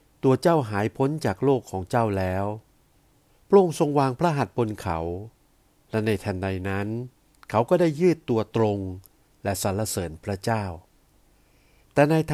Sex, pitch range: male, 100-130 Hz